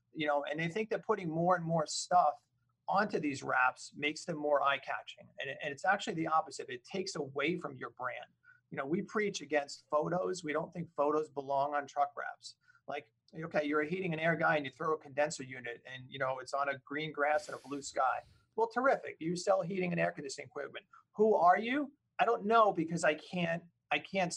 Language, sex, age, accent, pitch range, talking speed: English, male, 40-59, American, 145-180 Hz, 220 wpm